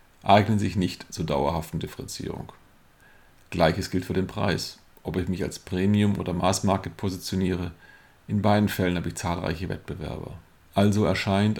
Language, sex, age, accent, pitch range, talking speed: German, male, 40-59, German, 90-100 Hz, 150 wpm